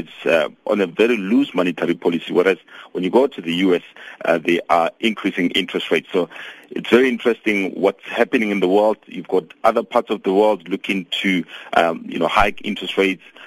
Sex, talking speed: male, 195 wpm